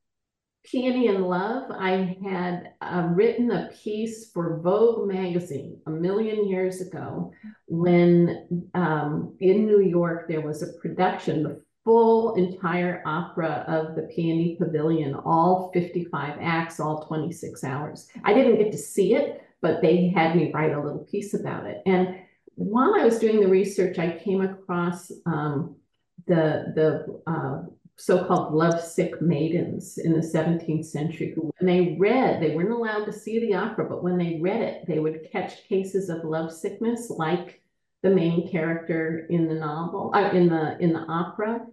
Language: English